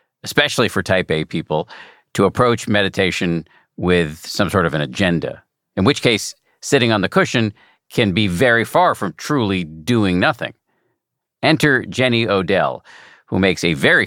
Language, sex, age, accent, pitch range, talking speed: English, male, 50-69, American, 90-120 Hz, 155 wpm